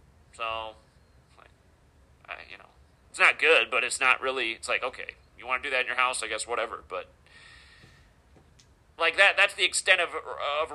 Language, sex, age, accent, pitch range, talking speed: English, male, 40-59, American, 125-165 Hz, 180 wpm